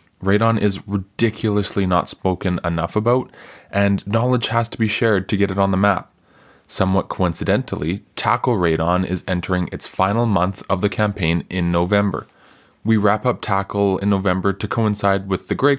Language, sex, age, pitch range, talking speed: English, male, 20-39, 90-105 Hz, 165 wpm